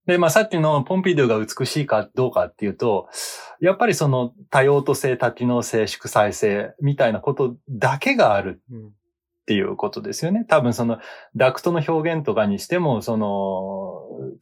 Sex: male